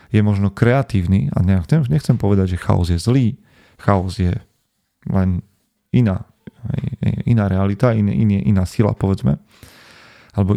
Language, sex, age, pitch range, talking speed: Slovak, male, 40-59, 100-115 Hz, 125 wpm